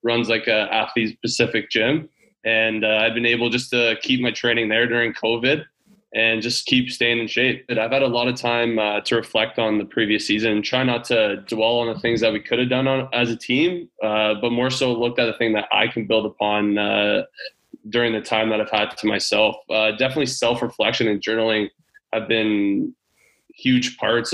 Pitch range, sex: 110-120 Hz, male